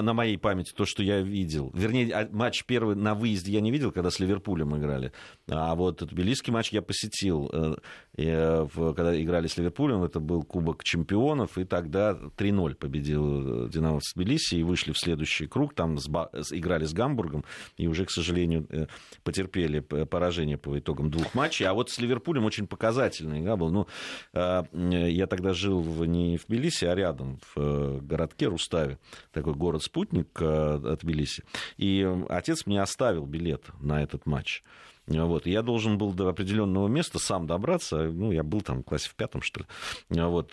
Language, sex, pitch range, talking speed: Russian, male, 80-105 Hz, 170 wpm